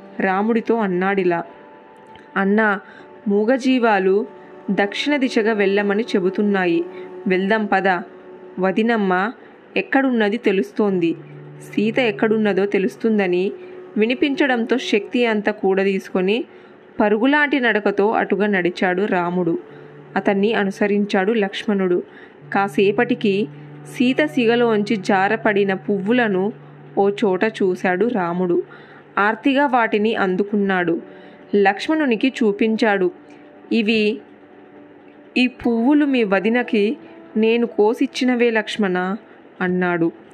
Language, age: Telugu, 20-39